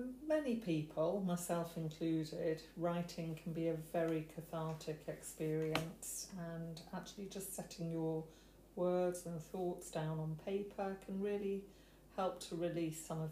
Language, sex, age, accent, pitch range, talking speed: English, female, 40-59, British, 160-175 Hz, 130 wpm